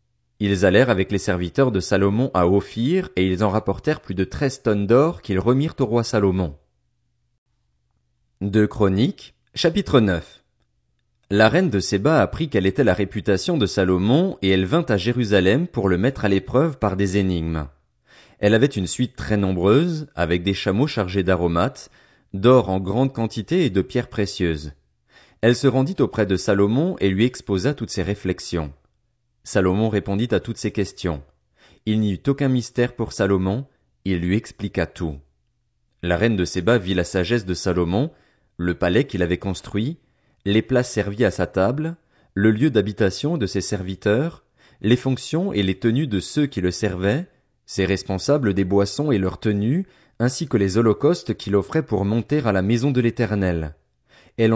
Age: 30-49